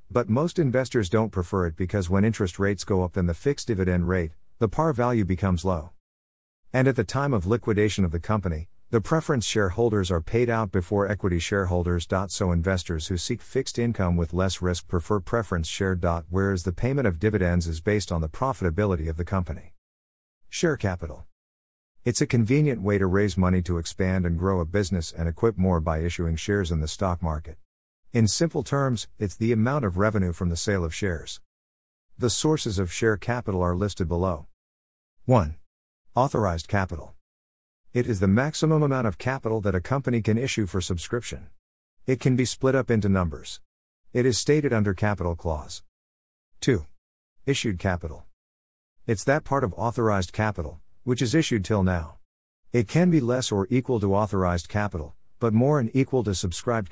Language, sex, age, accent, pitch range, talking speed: English, male, 50-69, American, 85-115 Hz, 180 wpm